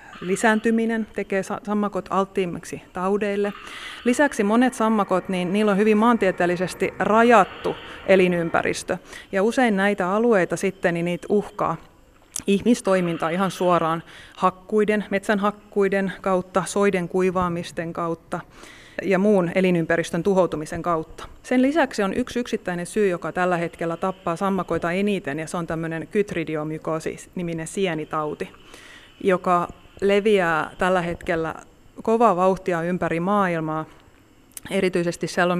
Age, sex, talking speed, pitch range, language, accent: 30-49, female, 110 wpm, 170-205 Hz, Finnish, native